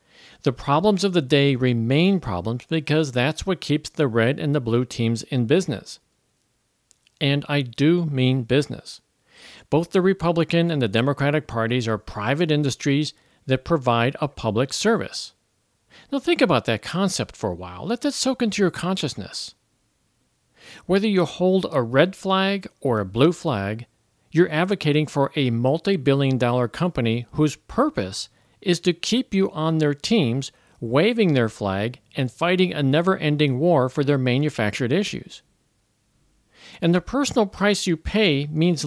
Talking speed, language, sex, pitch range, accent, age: 150 wpm, English, male, 130-180 Hz, American, 50-69